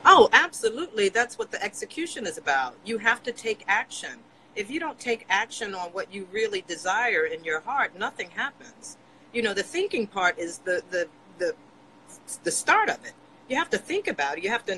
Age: 40-59